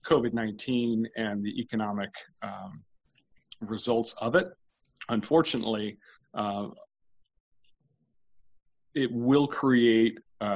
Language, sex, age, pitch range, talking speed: English, male, 30-49, 105-120 Hz, 80 wpm